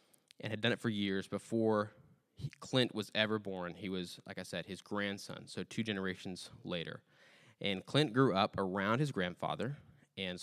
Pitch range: 100-120 Hz